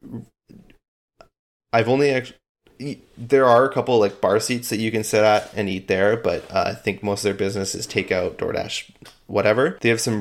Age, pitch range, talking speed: 20-39, 100-115 Hz, 190 wpm